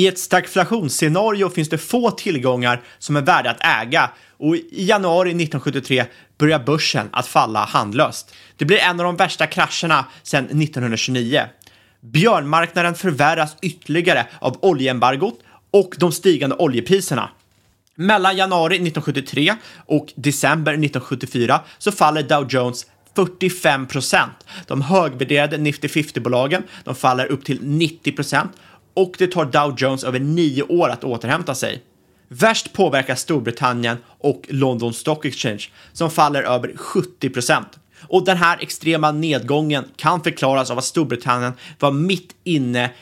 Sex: male